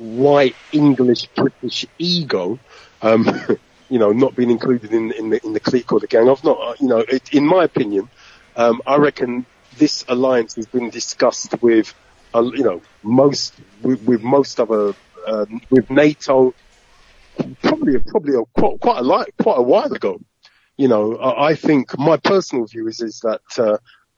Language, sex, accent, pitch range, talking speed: English, male, British, 115-140 Hz, 170 wpm